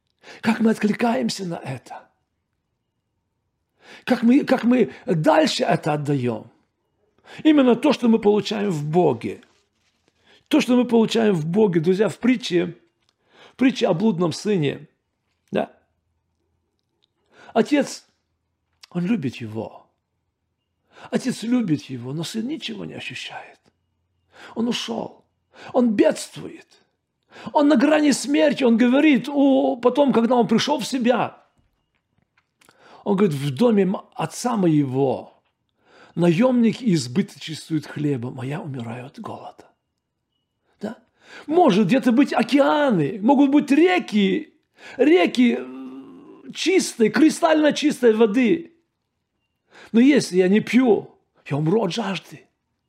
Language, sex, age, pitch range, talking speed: Russian, male, 50-69, 160-270 Hz, 110 wpm